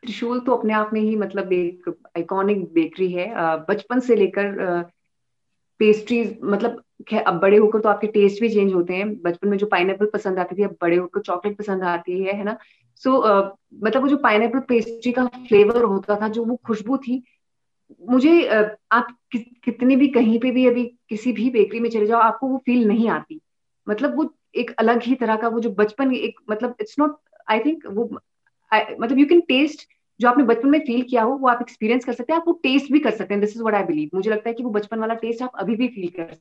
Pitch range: 185-235 Hz